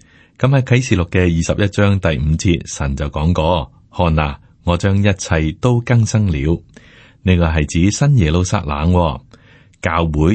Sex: male